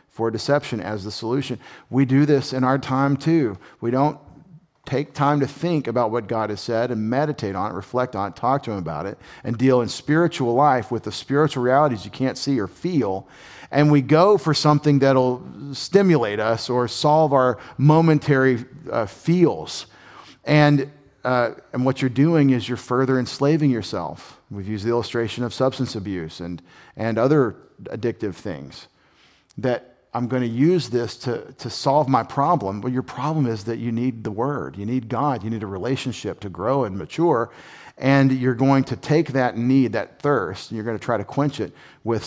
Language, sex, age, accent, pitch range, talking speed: English, male, 40-59, American, 110-140 Hz, 190 wpm